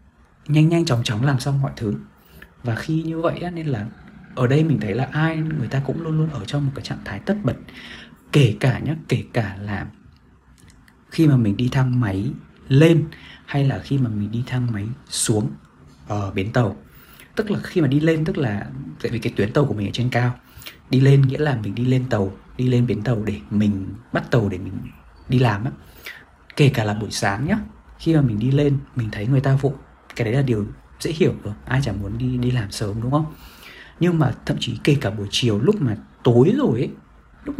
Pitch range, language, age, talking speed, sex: 110-145 Hz, Vietnamese, 20-39, 230 wpm, male